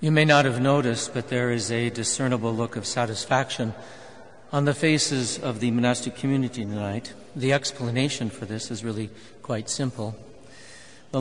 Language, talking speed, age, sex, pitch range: English, 160 wpm, 60-79, male, 120-135 Hz